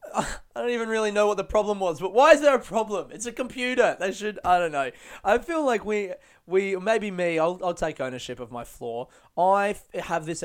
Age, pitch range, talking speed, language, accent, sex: 20-39, 135-175 Hz, 235 wpm, English, Australian, male